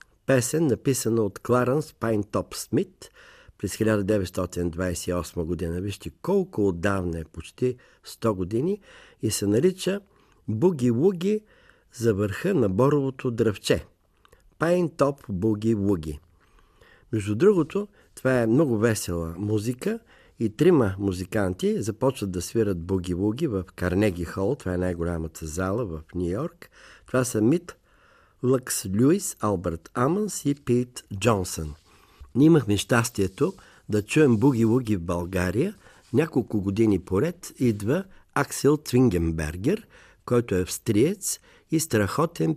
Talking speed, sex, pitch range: 115 wpm, male, 95-145 Hz